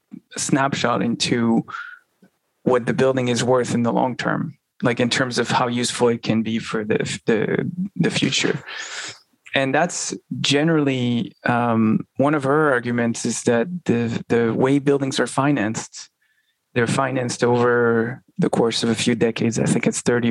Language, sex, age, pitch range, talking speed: English, male, 20-39, 115-135 Hz, 160 wpm